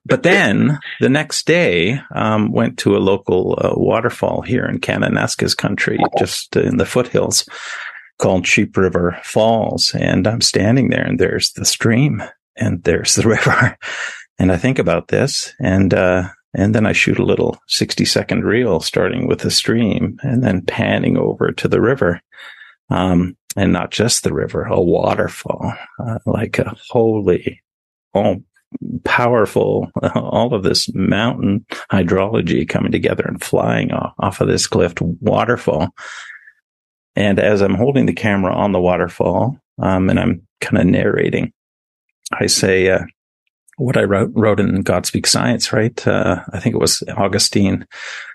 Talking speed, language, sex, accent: 155 wpm, English, male, American